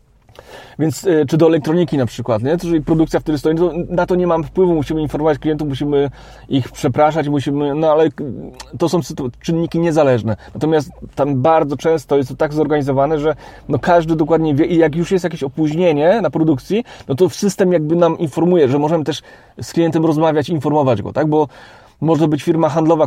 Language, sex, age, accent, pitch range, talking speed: Polish, male, 30-49, native, 140-165 Hz, 180 wpm